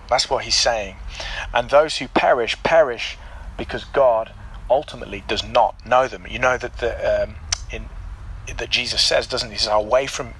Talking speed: 175 wpm